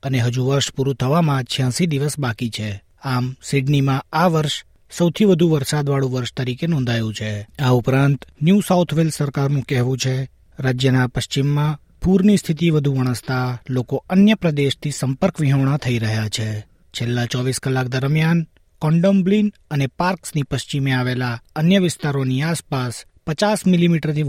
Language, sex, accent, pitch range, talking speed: Gujarati, male, native, 125-155 Hz, 140 wpm